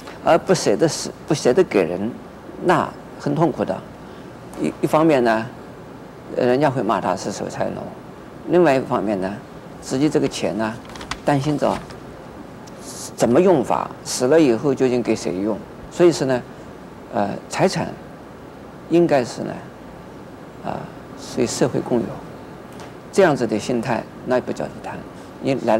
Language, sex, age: Chinese, male, 50-69